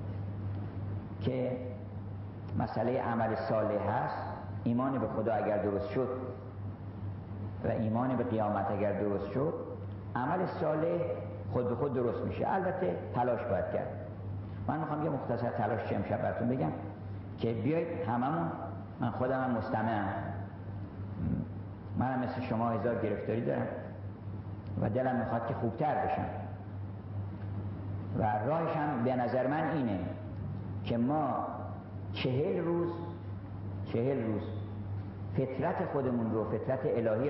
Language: Persian